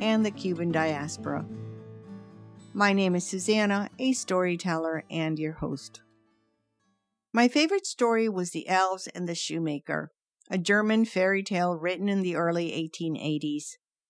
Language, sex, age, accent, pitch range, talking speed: English, female, 50-69, American, 160-205 Hz, 130 wpm